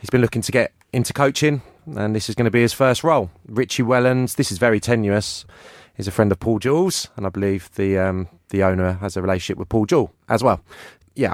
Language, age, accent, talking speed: English, 30-49, British, 235 wpm